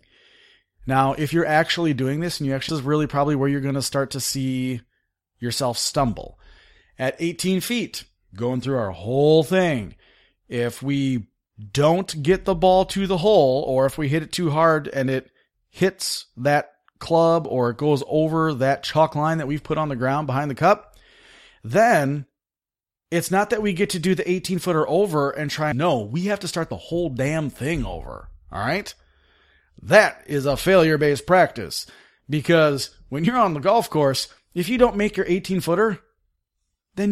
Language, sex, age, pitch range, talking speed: English, male, 30-49, 135-185 Hz, 180 wpm